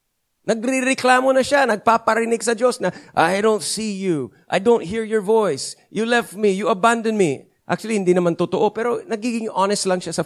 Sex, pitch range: male, 170-230 Hz